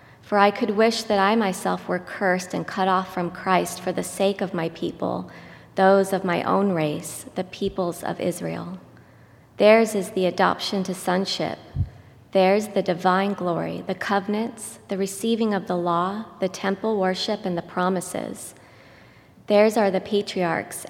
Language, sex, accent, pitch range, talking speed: English, female, American, 175-205 Hz, 160 wpm